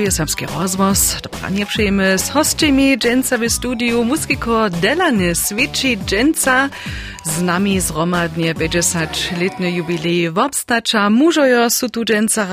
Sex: female